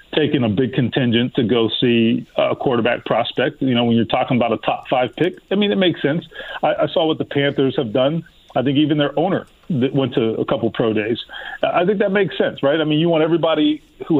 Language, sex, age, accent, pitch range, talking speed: English, male, 40-59, American, 125-155 Hz, 245 wpm